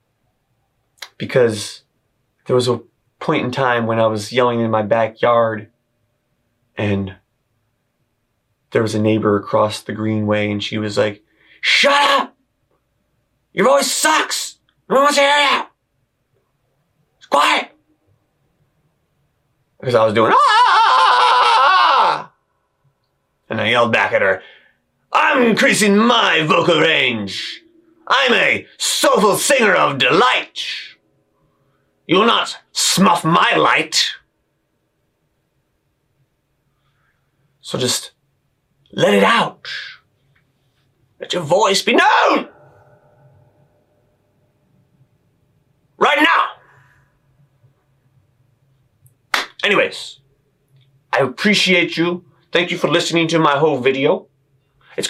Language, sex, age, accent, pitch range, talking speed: English, male, 30-49, American, 120-150 Hz, 100 wpm